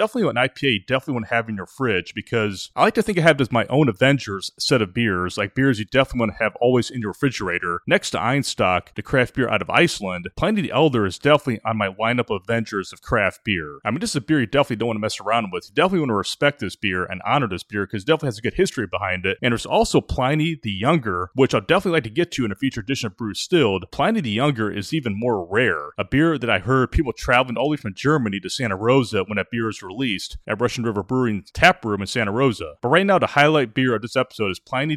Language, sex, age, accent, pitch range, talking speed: English, male, 30-49, American, 105-145 Hz, 275 wpm